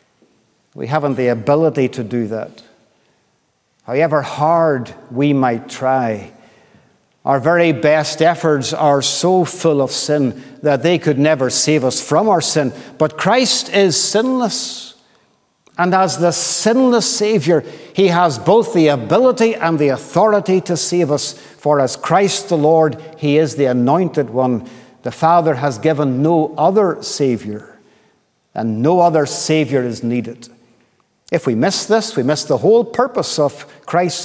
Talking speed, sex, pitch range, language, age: 145 wpm, male, 130-170 Hz, English, 50-69